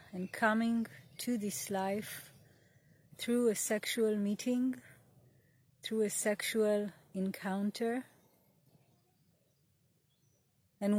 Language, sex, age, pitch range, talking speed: English, female, 30-49, 190-235 Hz, 75 wpm